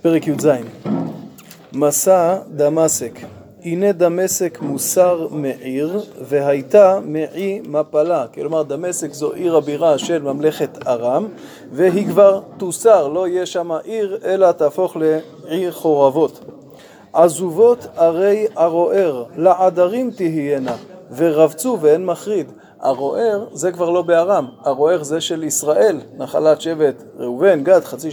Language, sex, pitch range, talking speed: Hebrew, male, 150-190 Hz, 110 wpm